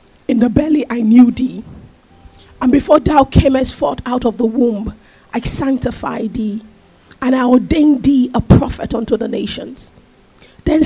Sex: female